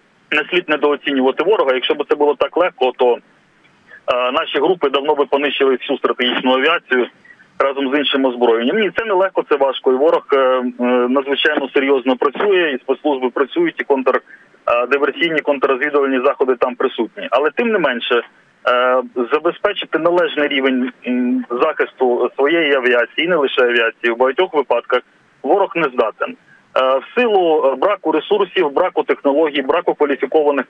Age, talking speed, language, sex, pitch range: 30-49, 145 wpm, Ukrainian, male, 130-210 Hz